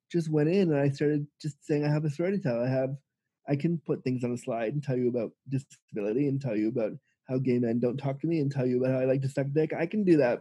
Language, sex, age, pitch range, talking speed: English, male, 20-39, 140-170 Hz, 305 wpm